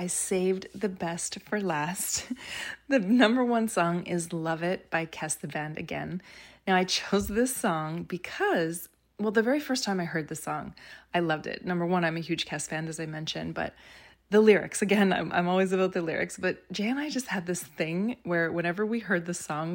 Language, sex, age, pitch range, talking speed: English, female, 20-39, 160-190 Hz, 215 wpm